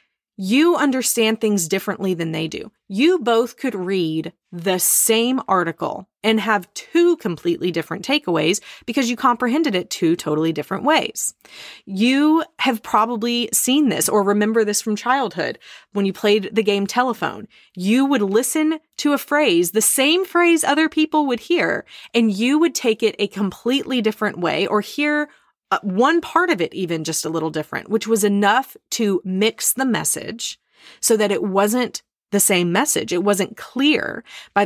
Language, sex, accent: English, female, American